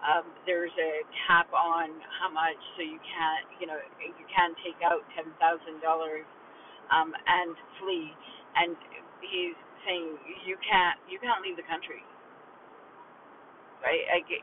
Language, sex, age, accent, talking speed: English, female, 40-59, American, 135 wpm